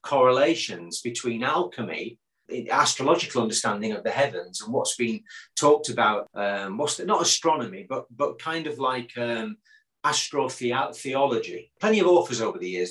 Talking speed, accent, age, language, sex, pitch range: 150 wpm, British, 40-59, English, male, 120-185 Hz